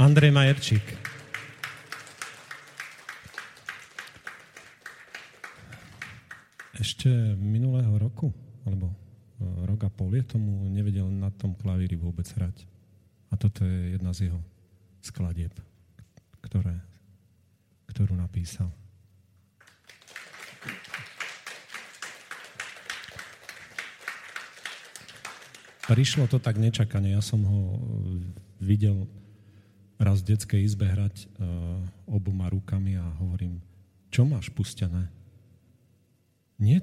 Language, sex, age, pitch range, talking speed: Slovak, male, 40-59, 95-115 Hz, 75 wpm